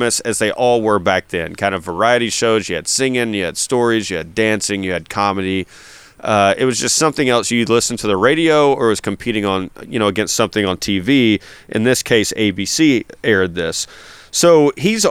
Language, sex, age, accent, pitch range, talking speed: English, male, 30-49, American, 105-145 Hz, 205 wpm